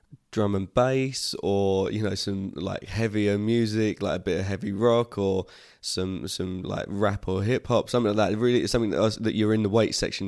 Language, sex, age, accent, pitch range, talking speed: English, male, 20-39, British, 95-115 Hz, 215 wpm